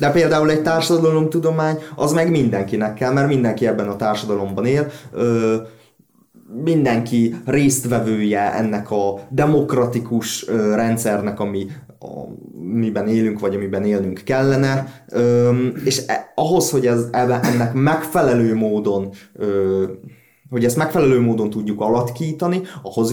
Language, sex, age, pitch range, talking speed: Hungarian, male, 20-39, 105-140 Hz, 105 wpm